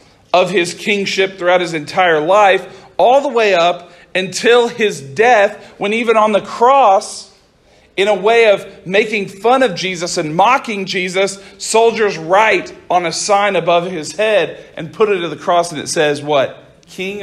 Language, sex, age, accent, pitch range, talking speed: English, male, 40-59, American, 160-205 Hz, 170 wpm